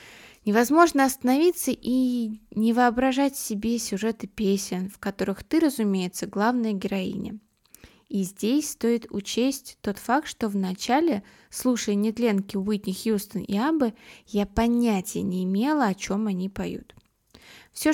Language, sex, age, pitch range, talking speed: Russian, female, 20-39, 200-265 Hz, 125 wpm